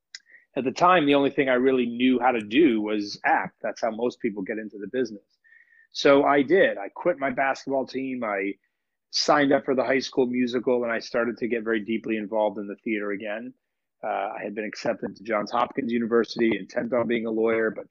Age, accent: 30-49, American